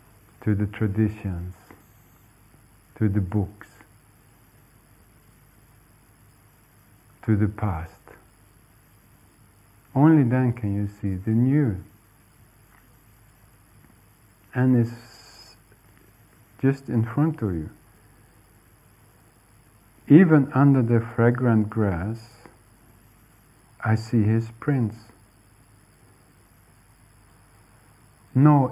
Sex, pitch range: male, 100-120 Hz